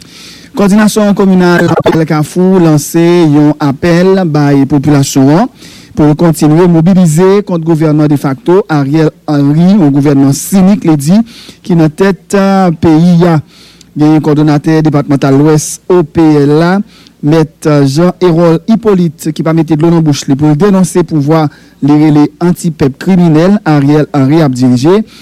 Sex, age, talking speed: male, 50-69, 135 wpm